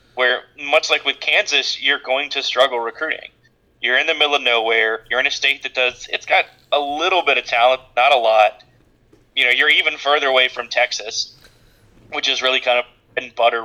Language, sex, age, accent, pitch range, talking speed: English, male, 20-39, American, 120-130 Hz, 205 wpm